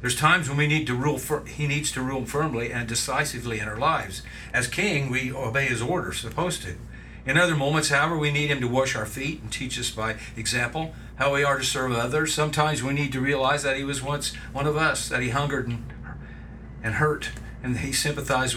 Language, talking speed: English, 225 wpm